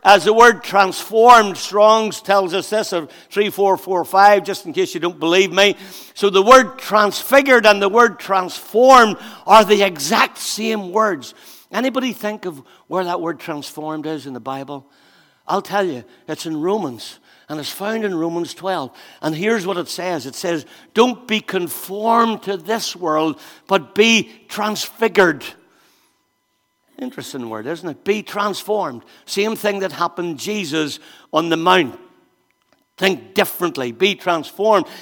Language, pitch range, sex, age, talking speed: English, 190-235 Hz, male, 60-79, 155 wpm